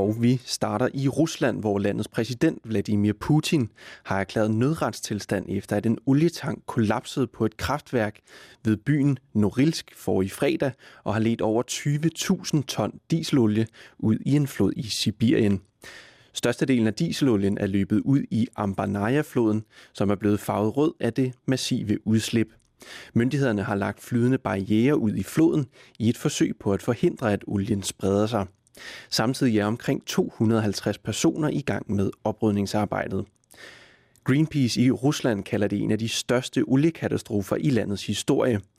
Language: English